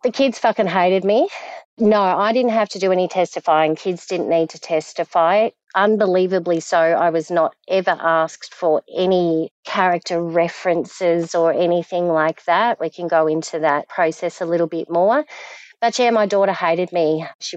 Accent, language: Australian, English